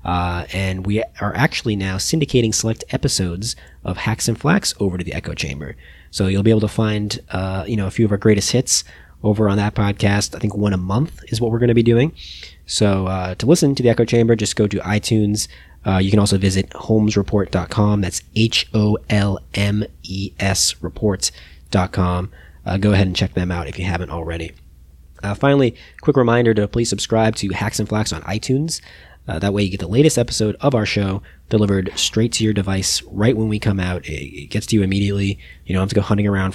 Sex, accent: male, American